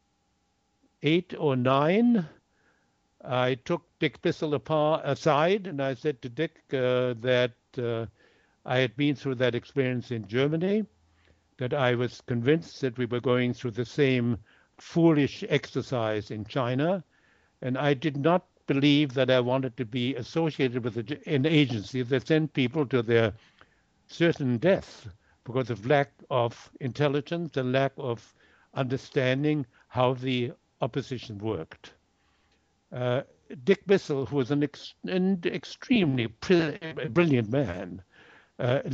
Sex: male